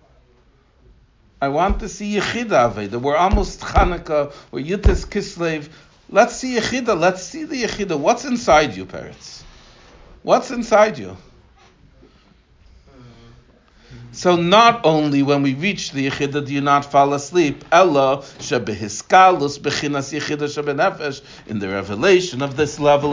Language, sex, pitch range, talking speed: English, male, 145-220 Hz, 130 wpm